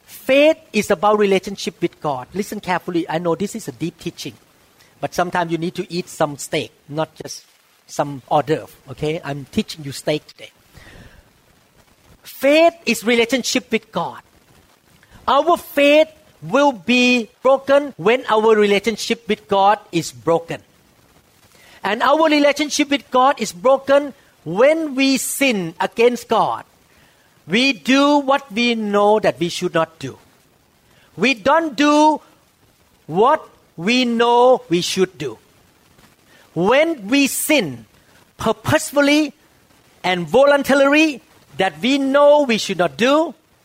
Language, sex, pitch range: English, male, 165-270 Hz